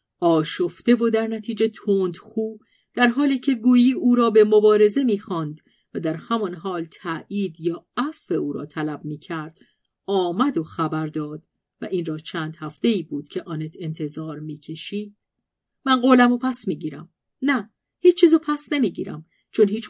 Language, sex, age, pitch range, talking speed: Persian, female, 40-59, 170-240 Hz, 160 wpm